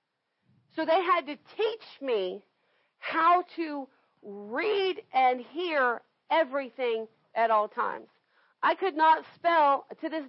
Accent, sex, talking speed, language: American, female, 125 wpm, English